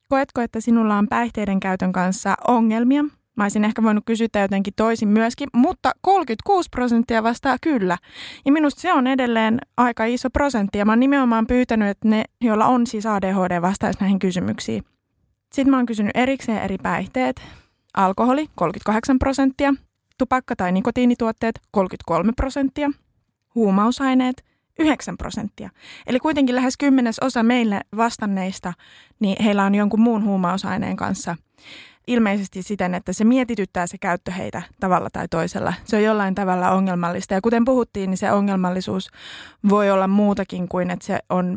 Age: 20-39